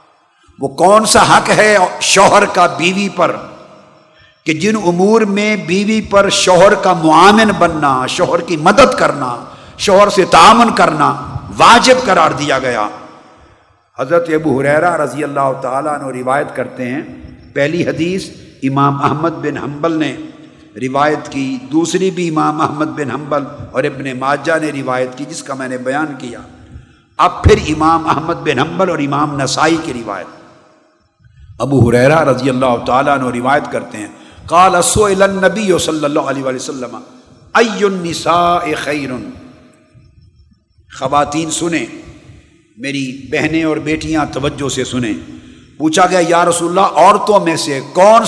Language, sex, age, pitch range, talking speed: Urdu, male, 50-69, 140-185 Hz, 135 wpm